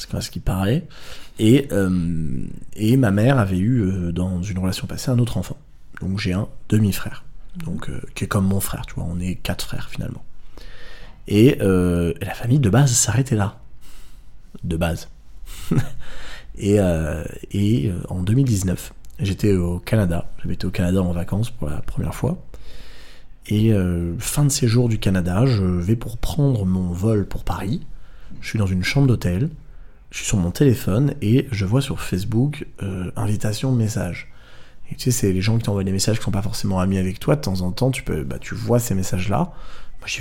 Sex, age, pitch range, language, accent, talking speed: male, 30-49, 95-125 Hz, French, French, 190 wpm